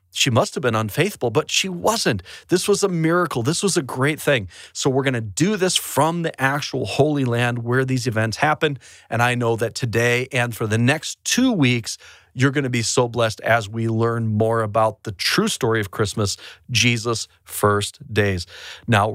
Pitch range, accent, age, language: 110-140 Hz, American, 40-59, English